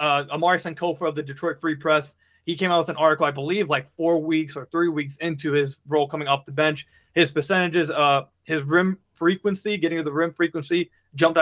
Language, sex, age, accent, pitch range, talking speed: English, male, 20-39, American, 150-170 Hz, 215 wpm